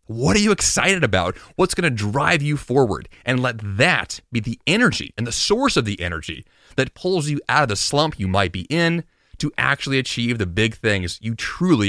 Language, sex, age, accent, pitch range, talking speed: English, male, 30-49, American, 105-150 Hz, 210 wpm